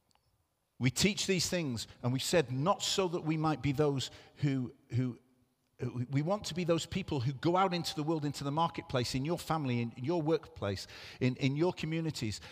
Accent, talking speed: British, 195 wpm